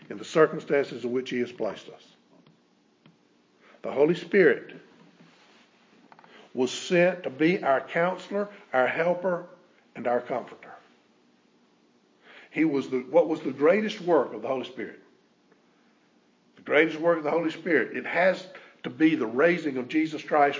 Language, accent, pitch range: English, American, 110-165 Hz